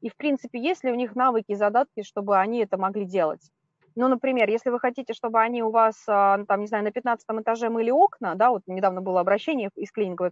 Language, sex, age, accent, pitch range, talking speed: Russian, female, 20-39, native, 185-235 Hz, 225 wpm